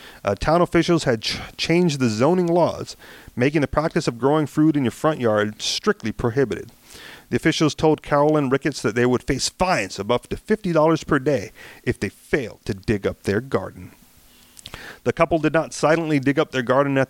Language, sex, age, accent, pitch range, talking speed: English, male, 40-59, American, 125-170 Hz, 195 wpm